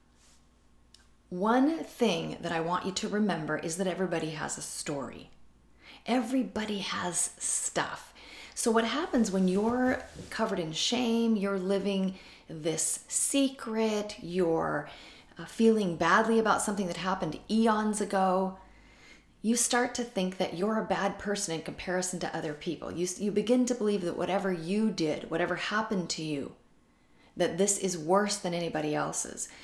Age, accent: 40-59, American